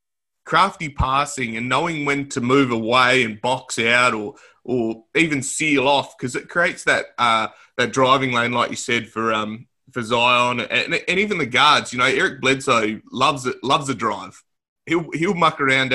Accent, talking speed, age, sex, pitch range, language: Australian, 185 wpm, 20-39, male, 120-145 Hz, English